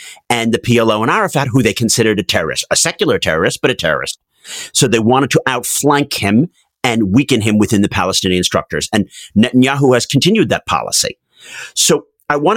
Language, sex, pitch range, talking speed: English, male, 105-140 Hz, 180 wpm